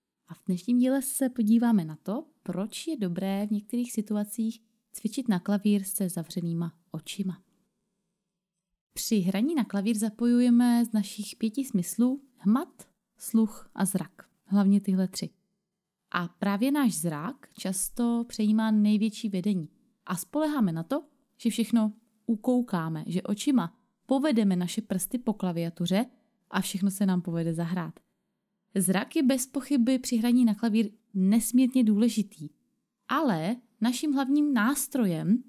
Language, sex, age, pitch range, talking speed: Czech, female, 20-39, 190-240 Hz, 130 wpm